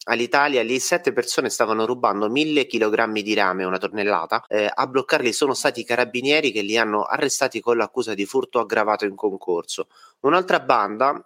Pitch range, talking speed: 110-140 Hz, 170 wpm